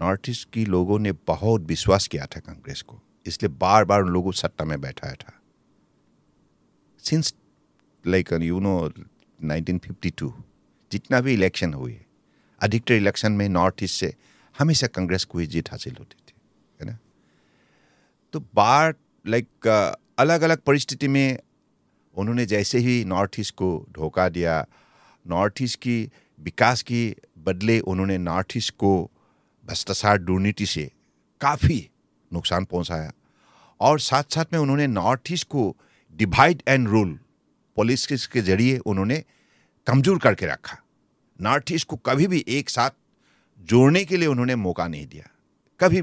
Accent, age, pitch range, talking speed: Indian, 50-69, 90-130 Hz, 130 wpm